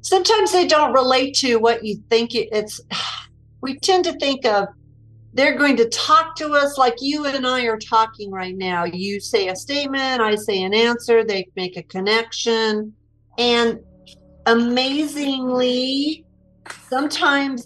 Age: 50-69